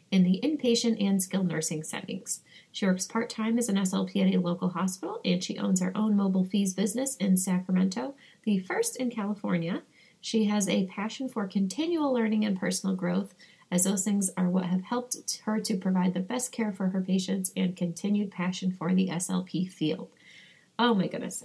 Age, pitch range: 30-49, 175-205 Hz